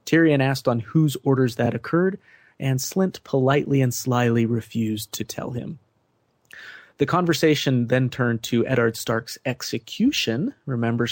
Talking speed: 135 wpm